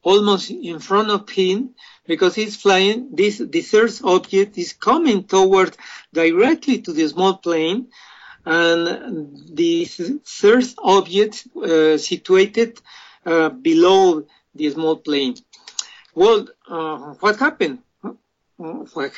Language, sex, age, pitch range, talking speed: English, male, 50-69, 170-245 Hz, 110 wpm